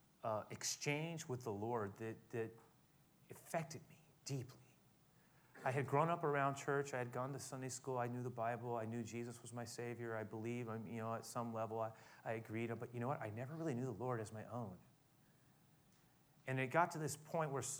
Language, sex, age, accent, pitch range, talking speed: English, male, 30-49, American, 125-175 Hz, 210 wpm